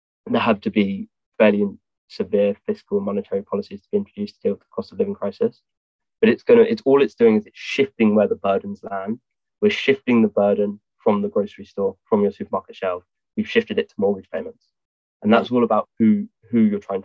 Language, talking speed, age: English, 220 wpm, 20-39